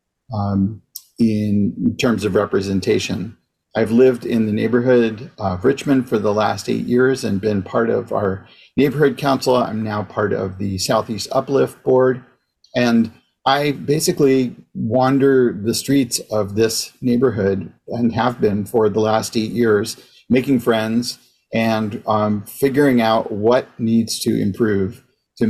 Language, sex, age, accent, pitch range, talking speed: English, male, 40-59, American, 105-130 Hz, 140 wpm